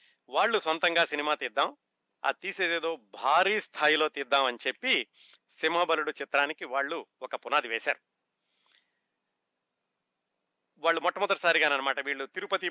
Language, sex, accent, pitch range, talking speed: Telugu, male, native, 135-160 Hz, 110 wpm